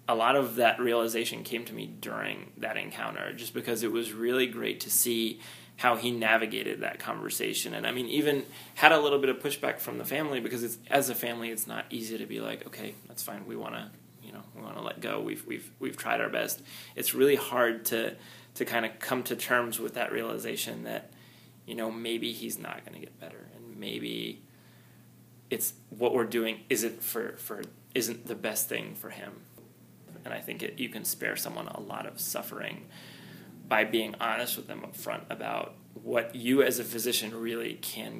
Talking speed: 200 wpm